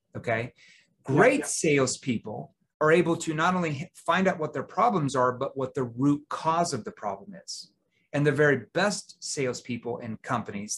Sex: male